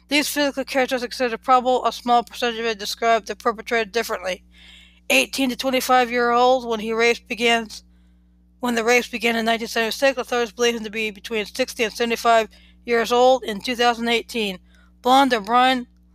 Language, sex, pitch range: English, female, 225-255 Hz